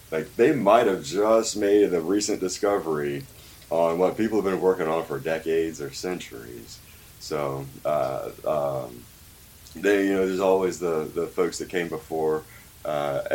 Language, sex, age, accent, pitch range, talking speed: English, male, 30-49, American, 80-100 Hz, 155 wpm